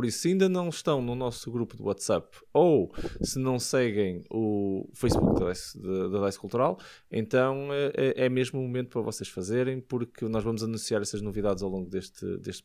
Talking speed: 180 wpm